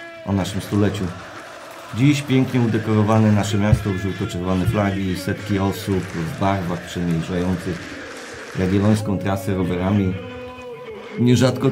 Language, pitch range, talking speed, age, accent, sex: Polish, 95-110 Hz, 95 wpm, 50-69, native, male